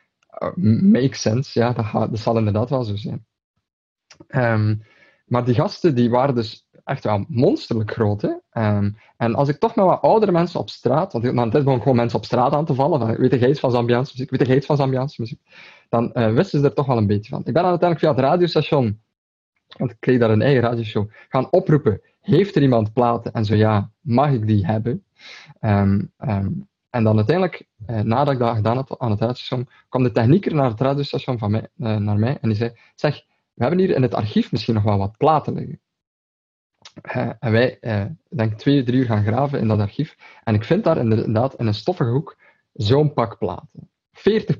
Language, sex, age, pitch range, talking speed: Dutch, male, 20-39, 110-145 Hz, 220 wpm